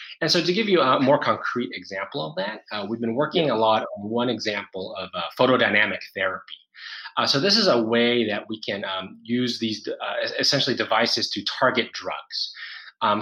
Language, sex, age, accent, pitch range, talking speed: English, male, 20-39, American, 105-130 Hz, 195 wpm